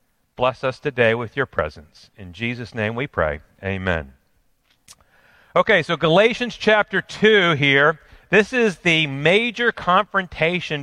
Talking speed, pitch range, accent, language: 125 wpm, 140-175 Hz, American, English